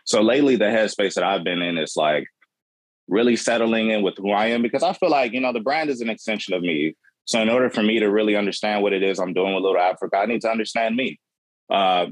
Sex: male